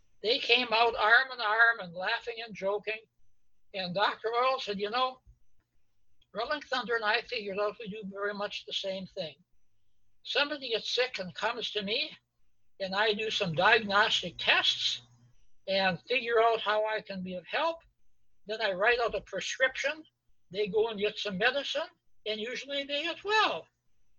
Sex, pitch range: male, 180-240 Hz